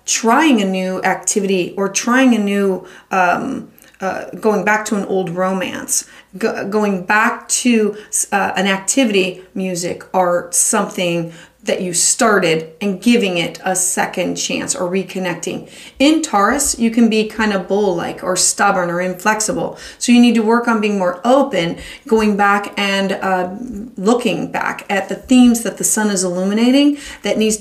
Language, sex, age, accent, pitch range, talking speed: English, female, 30-49, American, 185-235 Hz, 160 wpm